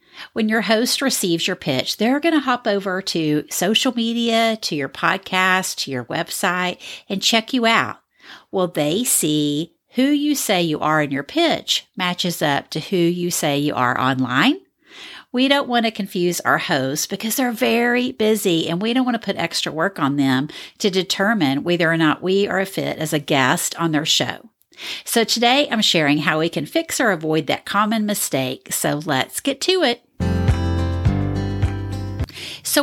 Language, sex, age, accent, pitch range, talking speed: English, female, 50-69, American, 150-230 Hz, 180 wpm